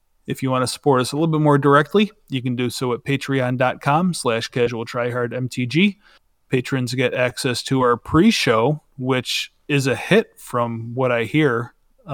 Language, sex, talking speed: English, male, 175 wpm